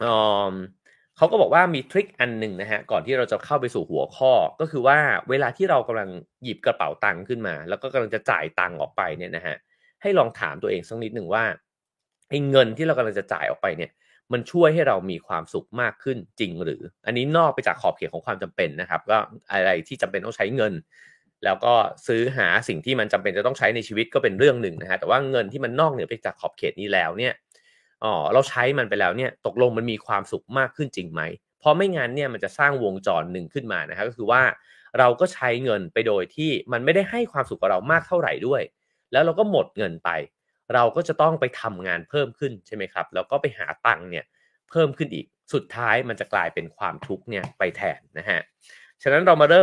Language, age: English, 30-49